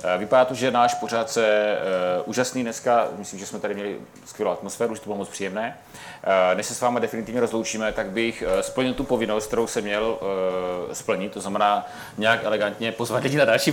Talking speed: 200 wpm